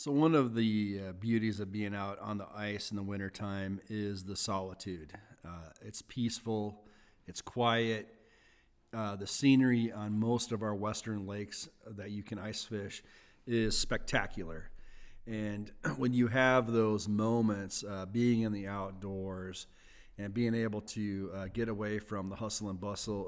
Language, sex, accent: English, male, American